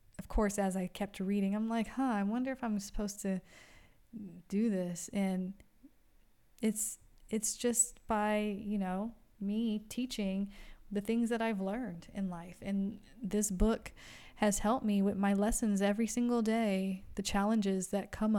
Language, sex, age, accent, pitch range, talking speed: English, female, 20-39, American, 190-215 Hz, 160 wpm